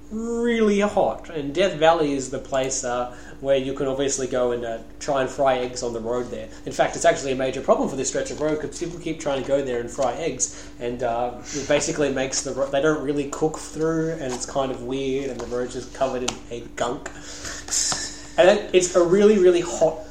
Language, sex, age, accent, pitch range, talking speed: English, male, 20-39, Australian, 130-170 Hz, 230 wpm